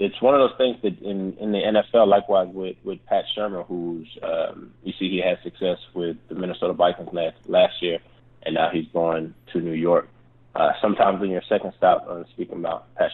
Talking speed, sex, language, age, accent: 210 wpm, male, English, 20-39, American